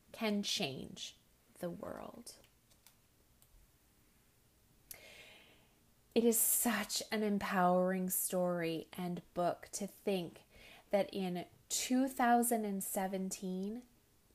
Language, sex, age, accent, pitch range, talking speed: English, female, 30-49, American, 185-225 Hz, 70 wpm